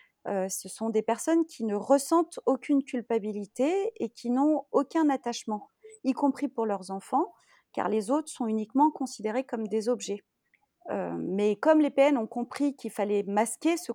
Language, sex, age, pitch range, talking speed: French, female, 30-49, 205-285 Hz, 170 wpm